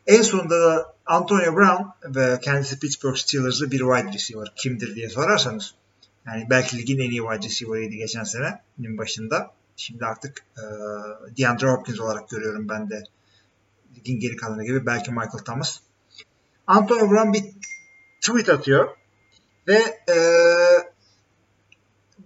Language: Turkish